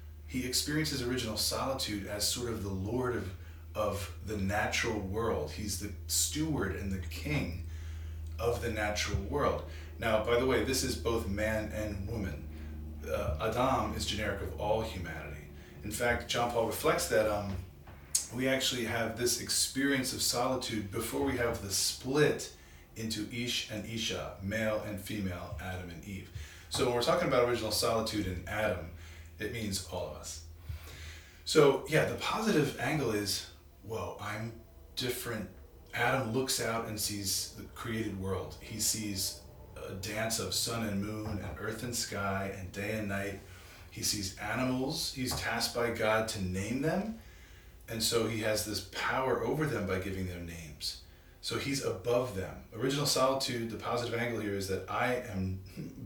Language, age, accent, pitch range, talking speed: English, 30-49, American, 90-115 Hz, 165 wpm